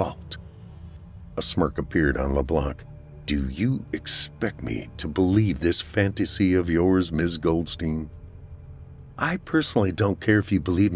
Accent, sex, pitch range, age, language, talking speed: American, male, 80-100 Hz, 50-69, English, 130 wpm